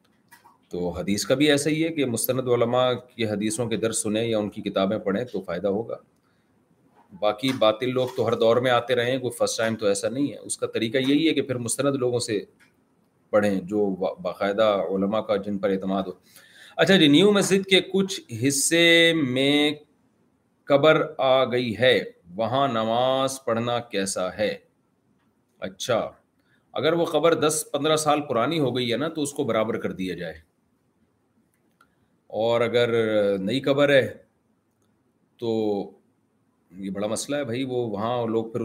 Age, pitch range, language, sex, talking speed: 30-49, 110-145 Hz, Urdu, male, 170 wpm